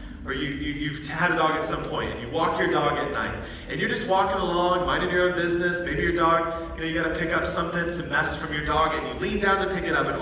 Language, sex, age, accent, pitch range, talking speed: English, male, 30-49, American, 135-200 Hz, 300 wpm